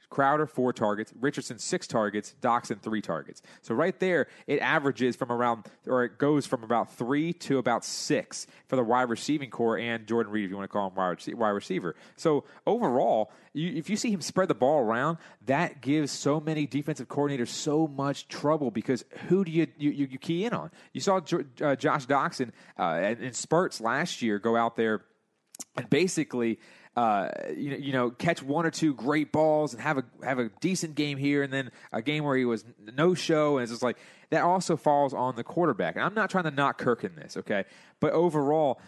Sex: male